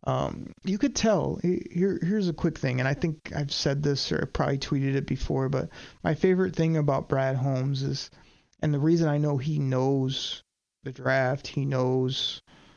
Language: English